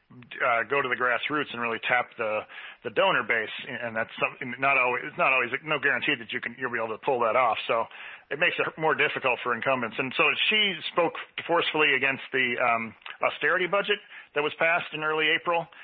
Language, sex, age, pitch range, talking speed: English, male, 40-59, 120-145 Hz, 210 wpm